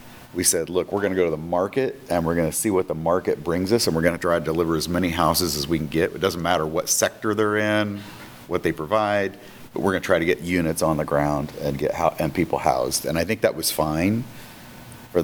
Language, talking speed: English, 265 wpm